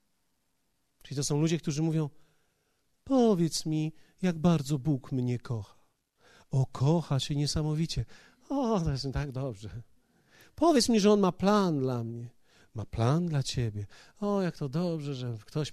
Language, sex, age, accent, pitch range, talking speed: Polish, male, 40-59, native, 115-180 Hz, 155 wpm